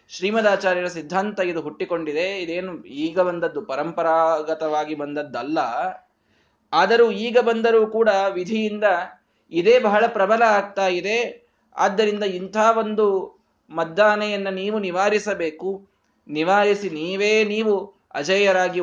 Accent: native